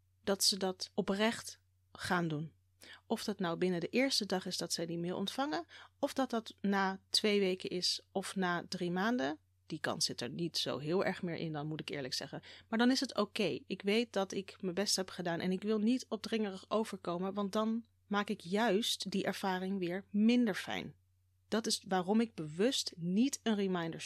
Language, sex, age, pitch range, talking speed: Dutch, female, 30-49, 180-225 Hz, 205 wpm